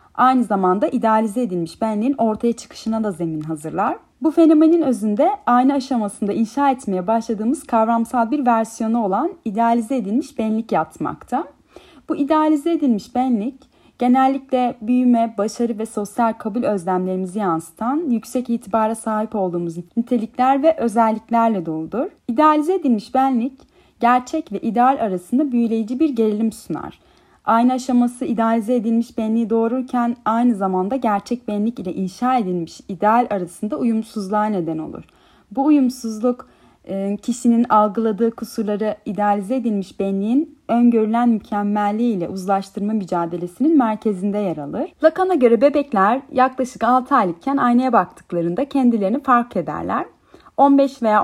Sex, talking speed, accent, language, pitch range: female, 120 wpm, native, Turkish, 210-260 Hz